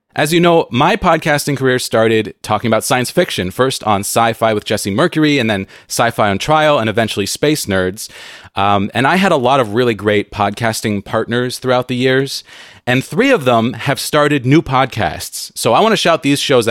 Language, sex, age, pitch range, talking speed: English, male, 30-49, 105-135 Hz, 200 wpm